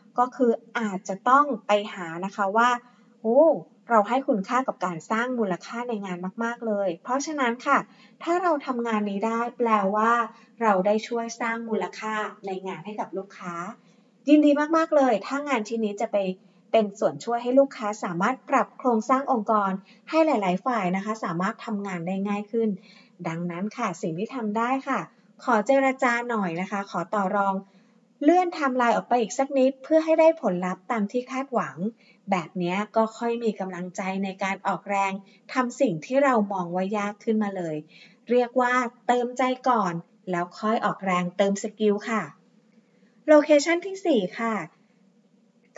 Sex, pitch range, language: female, 200-250 Hz, Thai